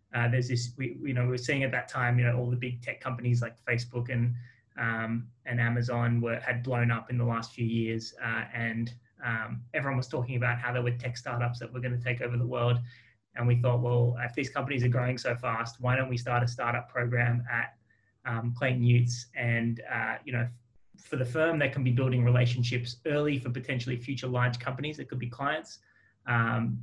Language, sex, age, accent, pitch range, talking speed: English, male, 20-39, Australian, 120-125 Hz, 220 wpm